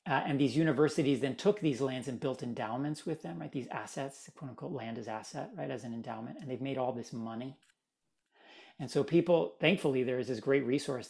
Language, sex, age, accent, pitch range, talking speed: English, male, 40-59, American, 125-155 Hz, 220 wpm